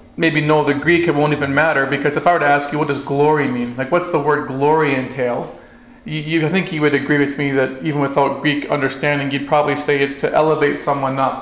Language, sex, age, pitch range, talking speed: English, male, 40-59, 130-155 Hz, 245 wpm